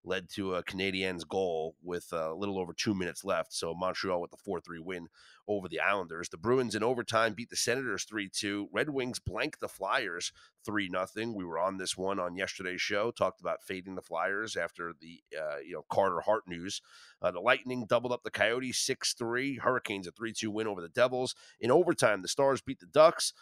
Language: English